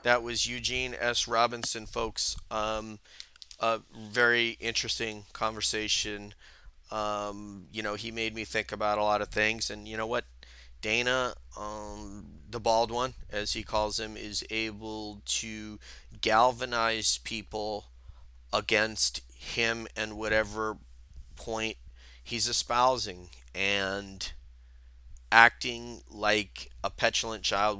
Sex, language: male, English